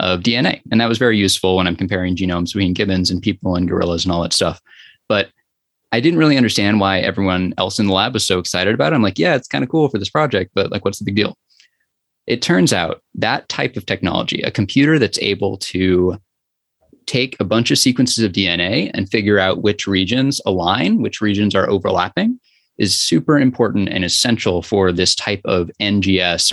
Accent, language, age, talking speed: American, English, 20-39, 210 wpm